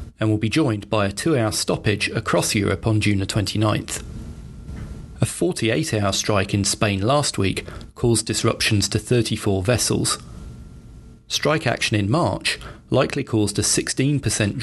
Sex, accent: male, British